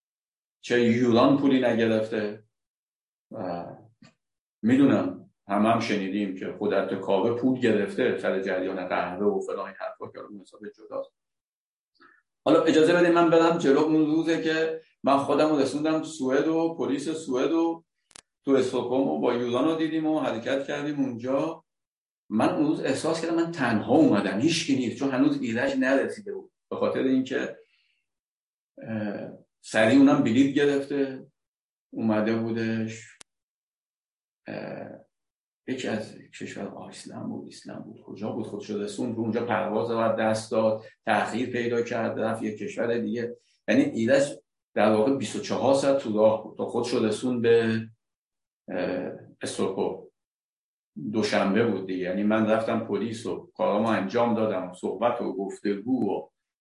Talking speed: 135 wpm